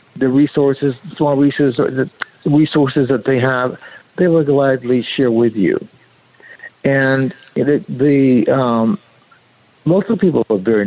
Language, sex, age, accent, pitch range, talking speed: English, male, 60-79, American, 120-150 Hz, 135 wpm